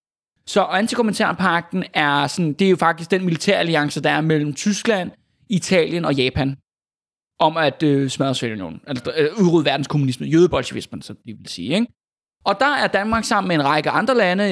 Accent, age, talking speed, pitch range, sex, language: native, 20-39, 180 wpm, 145-200 Hz, male, Danish